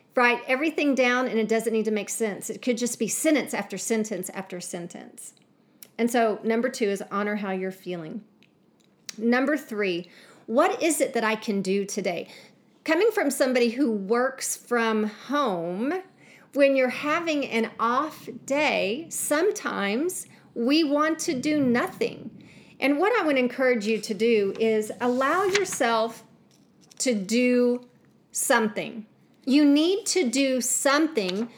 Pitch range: 215-280 Hz